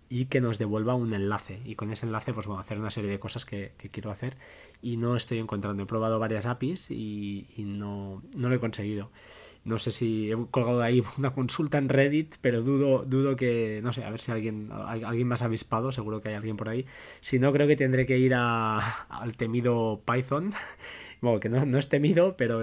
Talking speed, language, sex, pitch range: 225 wpm, Spanish, male, 105-125 Hz